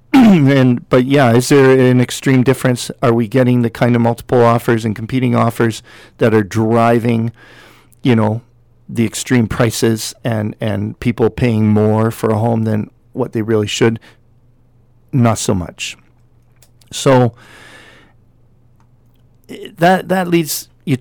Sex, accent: male, American